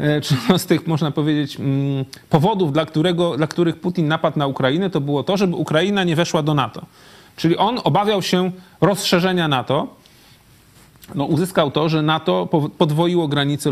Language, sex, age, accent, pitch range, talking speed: Polish, male, 30-49, native, 135-175 Hz, 145 wpm